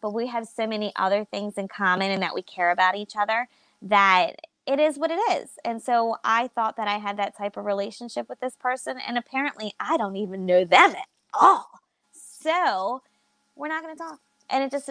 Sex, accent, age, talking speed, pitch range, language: female, American, 20-39, 215 wpm, 200-235 Hz, English